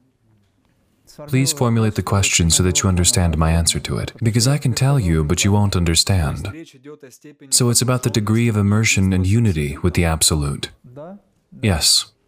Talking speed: 165 wpm